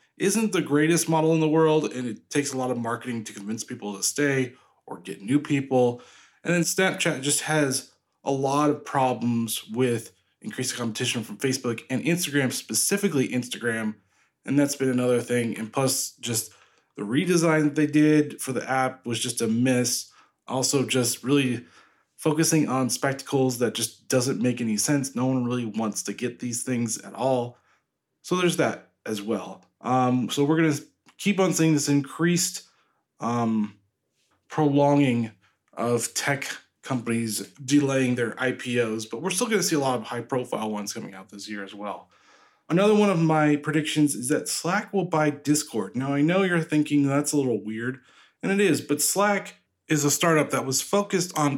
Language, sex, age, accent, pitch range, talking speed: English, male, 20-39, American, 120-150 Hz, 180 wpm